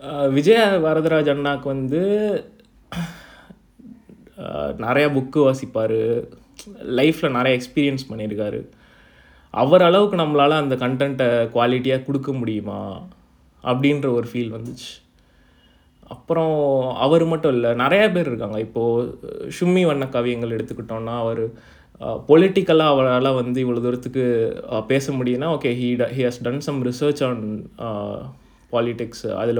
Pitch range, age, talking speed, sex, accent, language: 120-155 Hz, 20-39, 105 wpm, male, native, Tamil